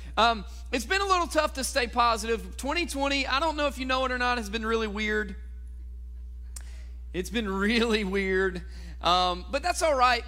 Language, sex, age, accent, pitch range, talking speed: English, male, 40-59, American, 145-230 Hz, 185 wpm